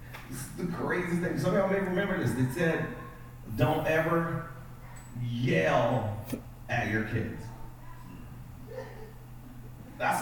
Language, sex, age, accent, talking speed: English, male, 40-59, American, 115 wpm